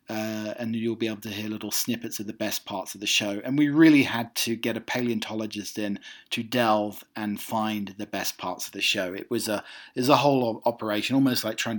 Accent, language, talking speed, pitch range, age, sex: British, English, 240 wpm, 115-145 Hz, 40-59, male